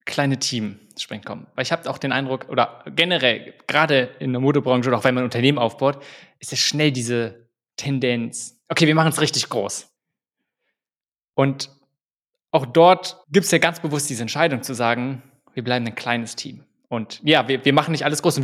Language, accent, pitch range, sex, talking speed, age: German, German, 125-145 Hz, male, 195 wpm, 20-39